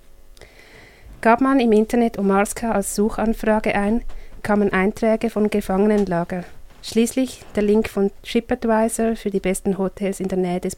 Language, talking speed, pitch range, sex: English, 140 wpm, 190-220 Hz, female